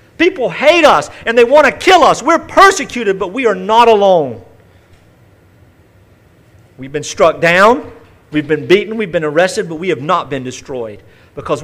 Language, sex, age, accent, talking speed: English, male, 50-69, American, 170 wpm